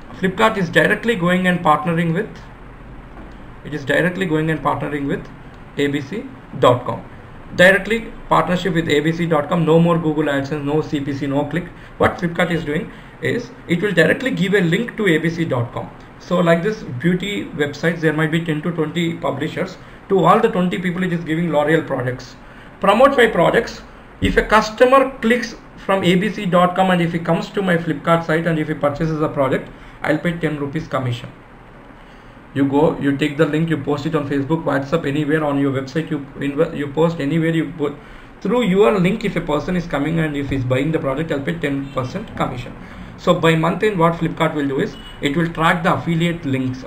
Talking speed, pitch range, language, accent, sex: 190 wpm, 140-175 Hz, English, Indian, male